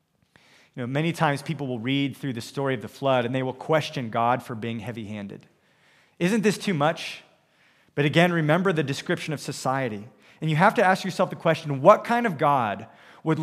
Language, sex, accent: English, male, American